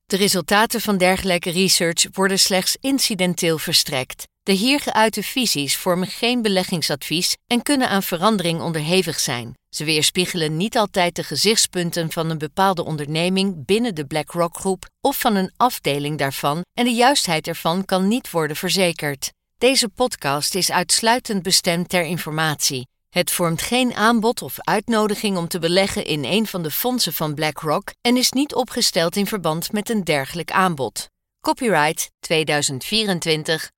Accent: Dutch